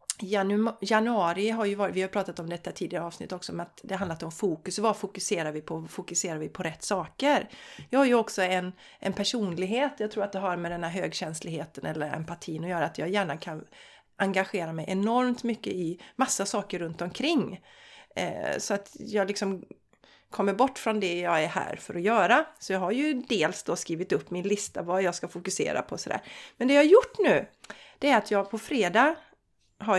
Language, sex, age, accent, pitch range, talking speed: Swedish, female, 40-59, native, 180-235 Hz, 210 wpm